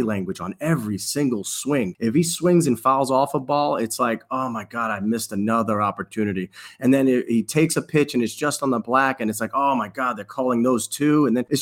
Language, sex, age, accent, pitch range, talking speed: English, male, 30-49, American, 115-150 Hz, 245 wpm